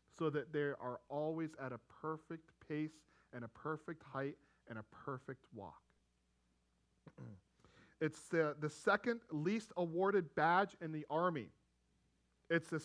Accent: American